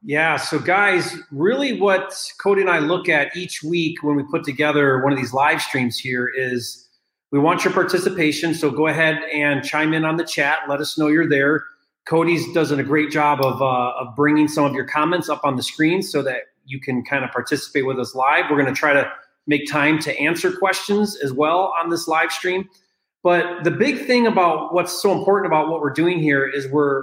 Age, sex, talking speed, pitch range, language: 30-49, male, 220 wpm, 145-175 Hz, English